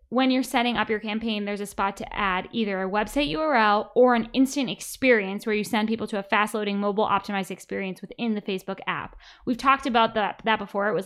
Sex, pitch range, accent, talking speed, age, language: female, 195-240 Hz, American, 230 wpm, 10-29, English